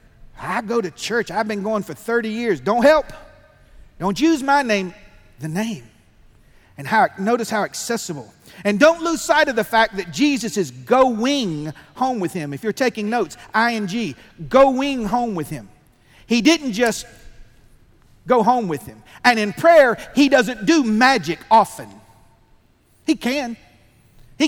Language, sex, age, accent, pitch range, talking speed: English, male, 40-59, American, 200-270 Hz, 155 wpm